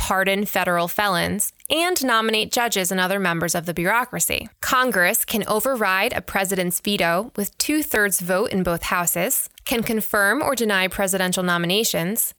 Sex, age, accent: female, 20-39, American